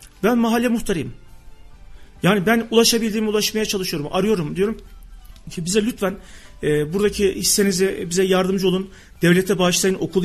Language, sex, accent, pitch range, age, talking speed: Turkish, male, native, 165-205 Hz, 40-59, 130 wpm